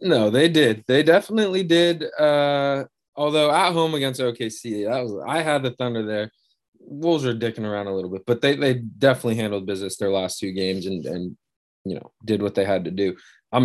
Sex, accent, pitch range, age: male, American, 105-130 Hz, 20-39